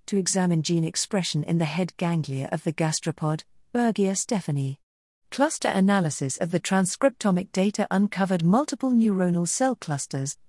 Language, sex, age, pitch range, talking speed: English, female, 40-59, 160-210 Hz, 135 wpm